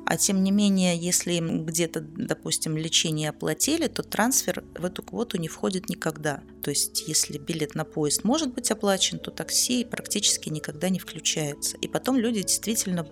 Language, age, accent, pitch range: Russian, 30-49, native, 165-225 Hz